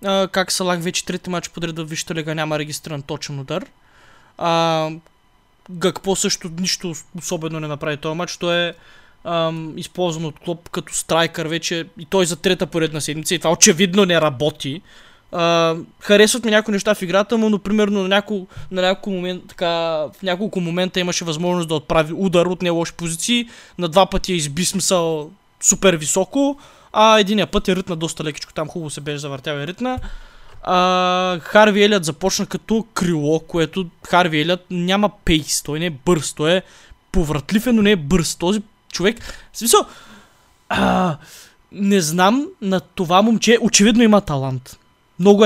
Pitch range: 165-200 Hz